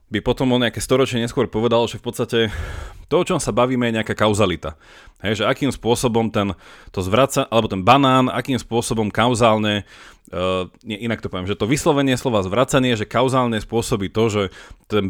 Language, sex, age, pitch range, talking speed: Slovak, male, 30-49, 100-120 Hz, 185 wpm